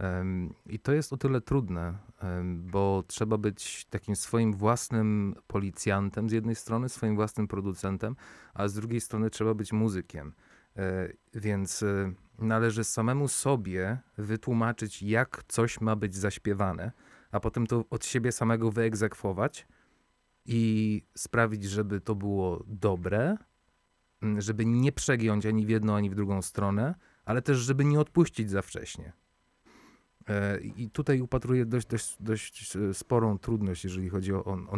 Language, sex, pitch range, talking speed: Polish, male, 100-115 Hz, 135 wpm